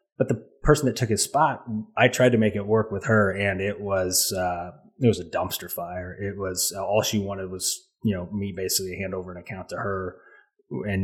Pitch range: 95-115 Hz